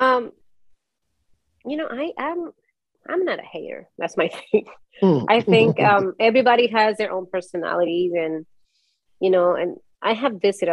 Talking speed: 150 wpm